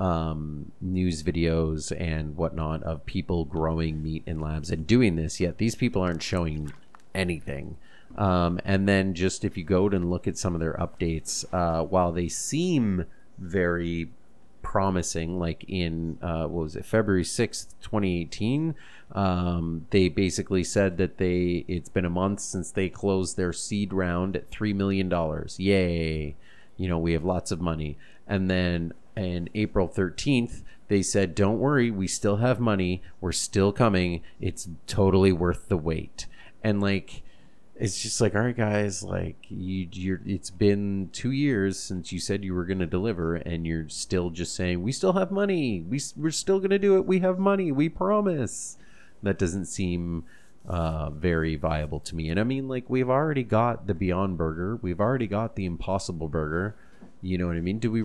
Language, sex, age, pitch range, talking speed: English, male, 30-49, 85-105 Hz, 180 wpm